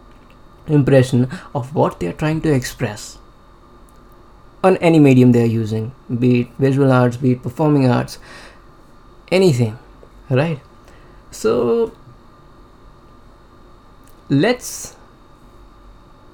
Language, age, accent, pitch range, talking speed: Hindi, 20-39, native, 120-140 Hz, 95 wpm